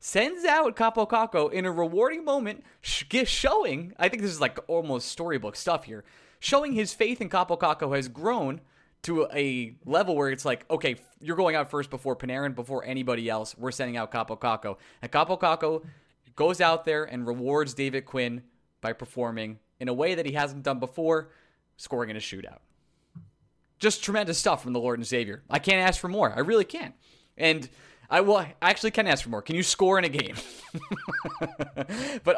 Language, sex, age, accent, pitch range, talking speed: English, male, 20-39, American, 125-180 Hz, 180 wpm